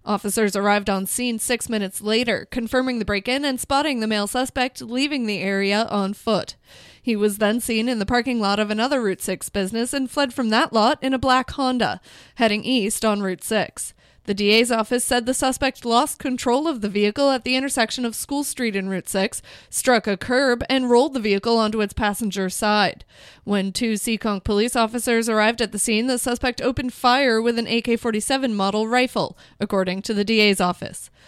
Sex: female